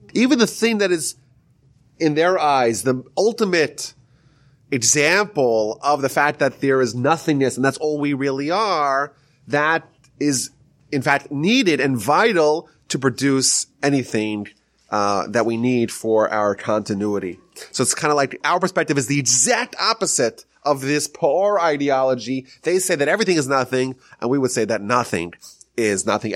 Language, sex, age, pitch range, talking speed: English, male, 30-49, 120-145 Hz, 160 wpm